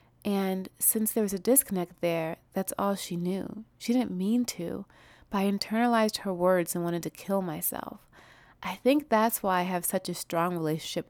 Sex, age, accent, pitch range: female, 30-49, American, 170-210 Hz